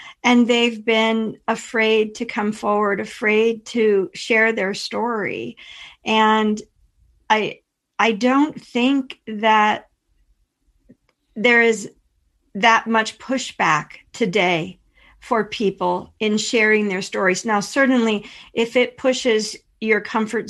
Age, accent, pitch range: 50-69, American, 195-230 Hz